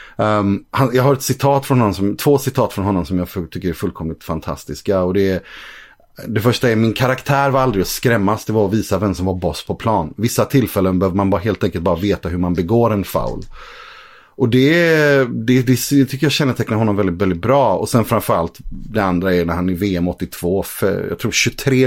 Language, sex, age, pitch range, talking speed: Swedish, male, 30-49, 90-115 Hz, 225 wpm